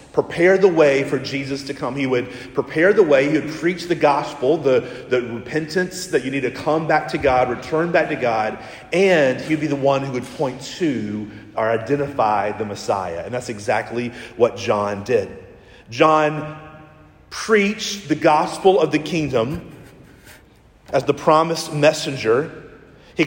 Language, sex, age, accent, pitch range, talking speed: English, male, 40-59, American, 130-170 Hz, 165 wpm